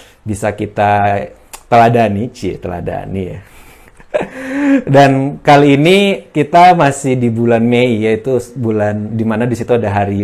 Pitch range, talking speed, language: 105-135 Hz, 115 wpm, Indonesian